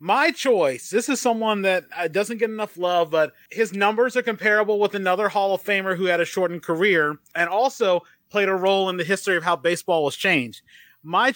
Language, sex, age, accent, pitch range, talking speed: English, male, 30-49, American, 170-205 Hz, 205 wpm